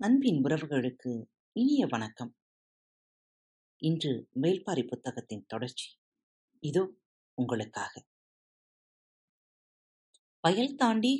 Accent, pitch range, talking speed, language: native, 130-195 Hz, 65 wpm, Tamil